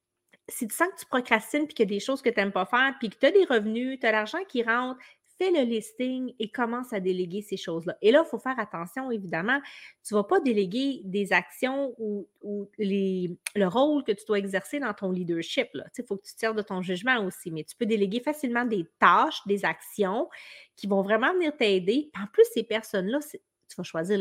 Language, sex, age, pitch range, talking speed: French, female, 30-49, 205-280 Hz, 235 wpm